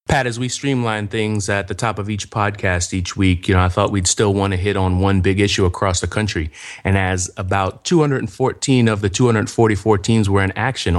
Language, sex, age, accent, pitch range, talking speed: English, male, 30-49, American, 95-110 Hz, 220 wpm